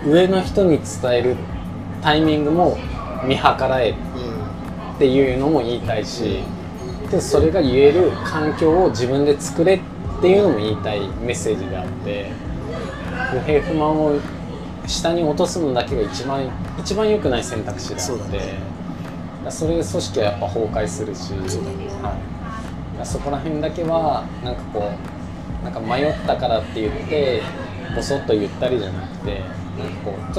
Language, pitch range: Japanese, 90-135 Hz